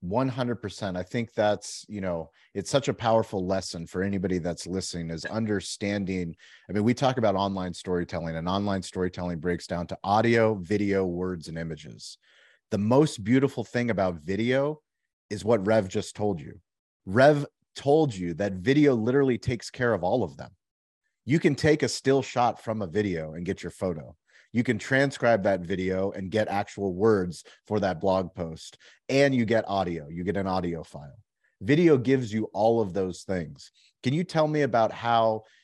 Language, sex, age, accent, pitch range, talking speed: English, male, 30-49, American, 95-120 Hz, 180 wpm